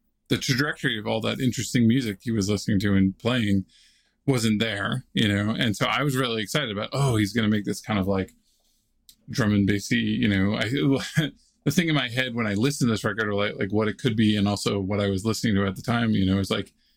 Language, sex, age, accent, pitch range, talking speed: English, male, 20-39, American, 100-130 Hz, 250 wpm